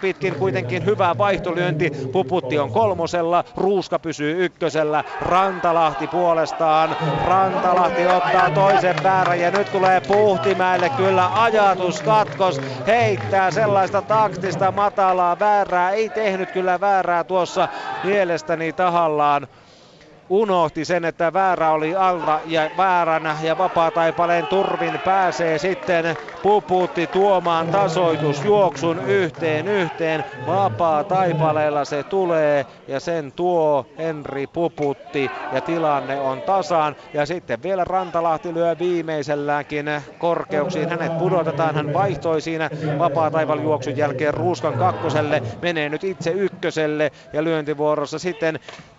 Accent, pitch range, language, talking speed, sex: native, 155-185 Hz, Finnish, 105 wpm, male